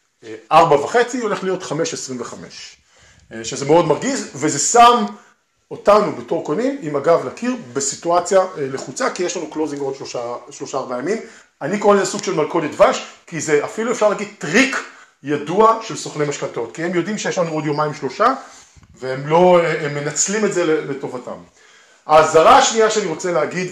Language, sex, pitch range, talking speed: Hebrew, male, 145-210 Hz, 160 wpm